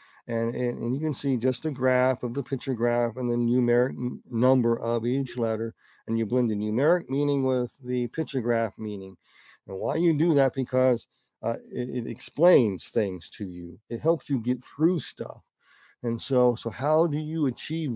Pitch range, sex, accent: 115-145 Hz, male, American